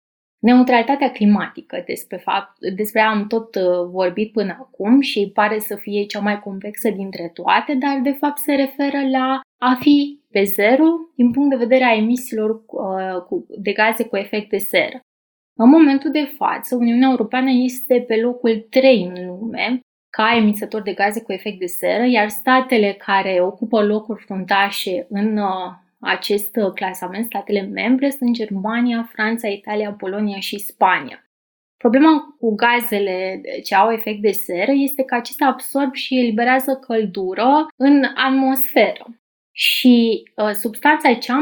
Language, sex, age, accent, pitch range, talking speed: Romanian, female, 20-39, native, 205-260 Hz, 145 wpm